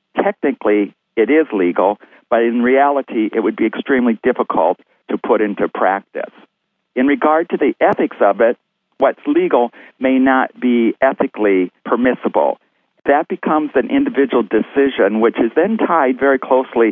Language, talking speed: English, 145 wpm